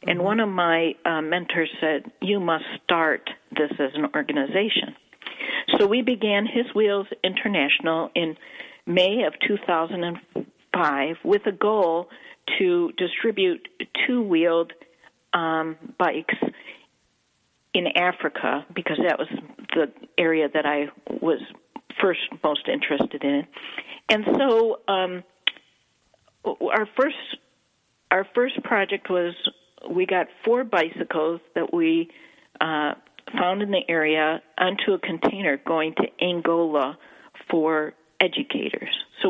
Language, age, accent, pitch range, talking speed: English, 50-69, American, 170-220 Hz, 110 wpm